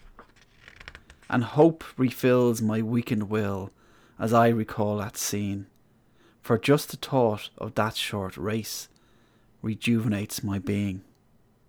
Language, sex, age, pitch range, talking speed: English, male, 30-49, 110-125 Hz, 115 wpm